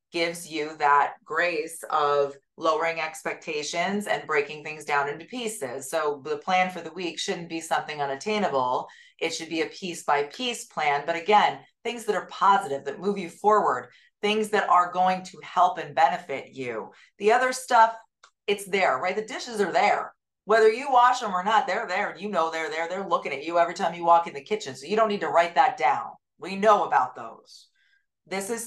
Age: 30-49